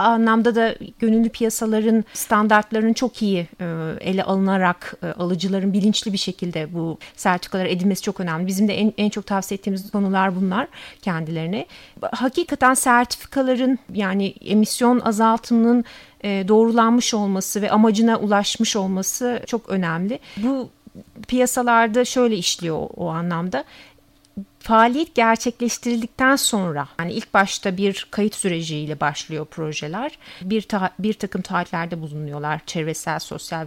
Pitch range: 175-225 Hz